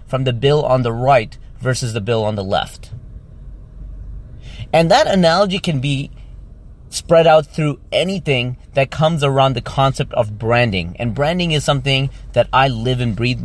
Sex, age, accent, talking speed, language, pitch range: male, 30-49, American, 165 wpm, English, 120-150 Hz